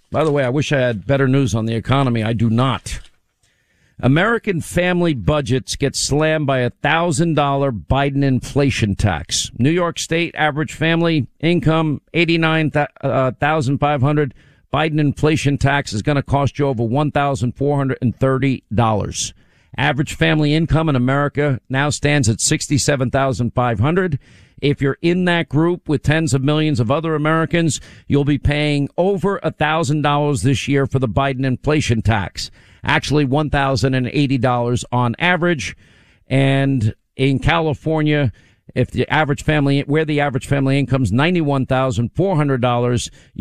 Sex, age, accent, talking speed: male, 50-69, American, 130 wpm